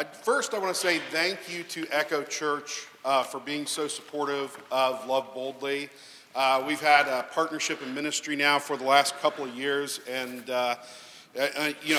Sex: male